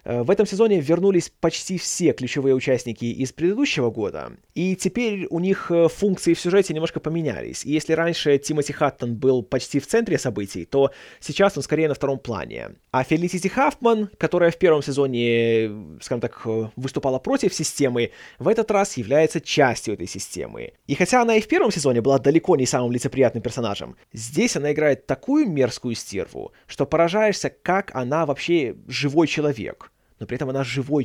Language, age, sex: Russian, 20-39, male